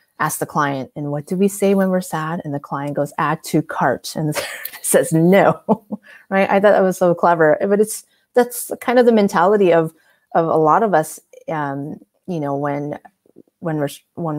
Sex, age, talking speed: female, 30-49, 200 wpm